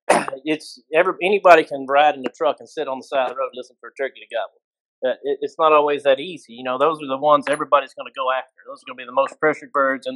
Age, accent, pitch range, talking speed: 30-49, American, 130-155 Hz, 290 wpm